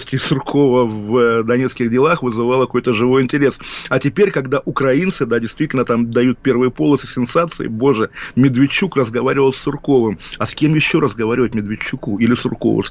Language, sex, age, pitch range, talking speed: Russian, male, 20-39, 120-145 Hz, 155 wpm